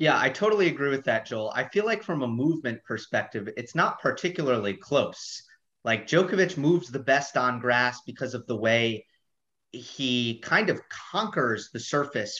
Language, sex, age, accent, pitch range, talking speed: English, male, 30-49, American, 115-150 Hz, 170 wpm